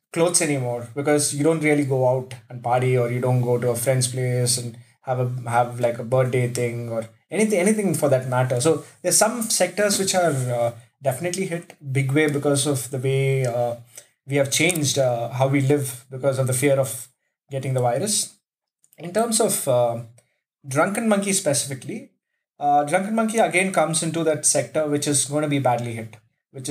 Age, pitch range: 20-39, 125-160 Hz